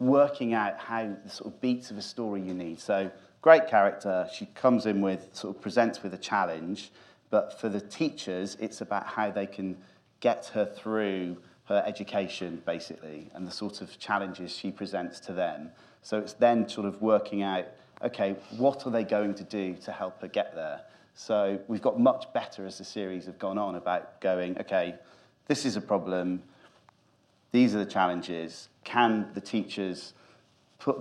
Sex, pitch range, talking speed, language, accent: male, 95-110 Hz, 180 wpm, English, British